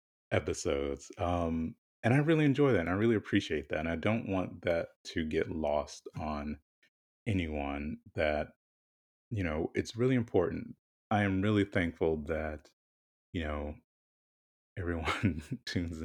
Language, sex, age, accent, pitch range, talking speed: English, male, 30-49, American, 75-100 Hz, 140 wpm